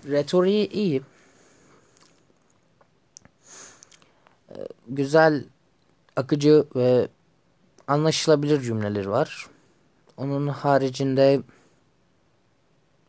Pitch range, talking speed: 140-185 Hz, 45 wpm